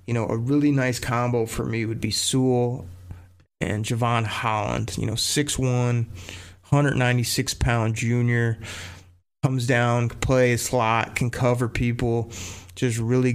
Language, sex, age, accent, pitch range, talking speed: English, male, 30-49, American, 110-130 Hz, 135 wpm